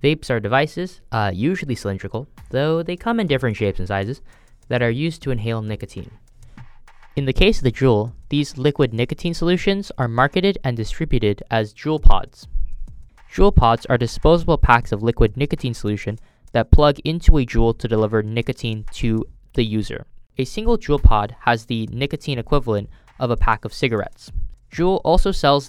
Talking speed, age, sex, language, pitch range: 170 wpm, 10-29, male, English, 115-150 Hz